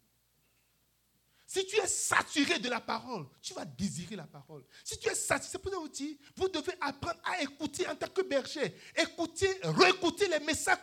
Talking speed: 185 wpm